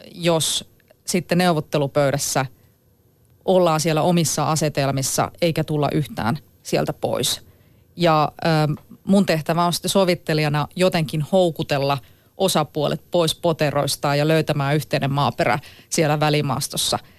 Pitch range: 140-170 Hz